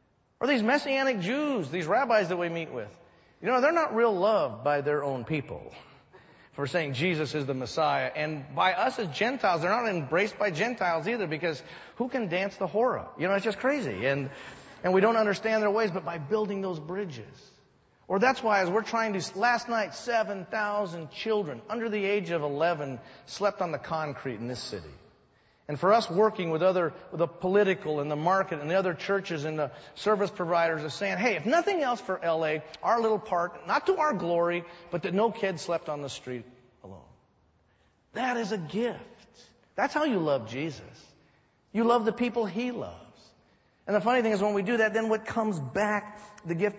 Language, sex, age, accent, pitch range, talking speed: English, male, 40-59, American, 160-220 Hz, 195 wpm